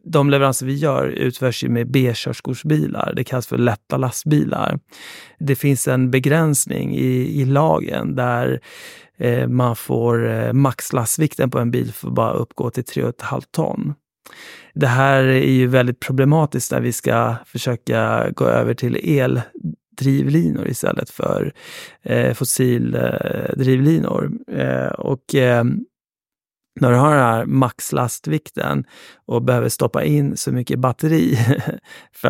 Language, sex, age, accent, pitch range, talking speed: Swedish, male, 30-49, native, 115-140 Hz, 130 wpm